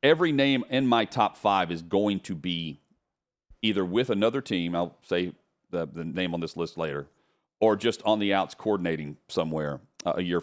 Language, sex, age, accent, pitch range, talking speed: English, male, 40-59, American, 95-130 Hz, 190 wpm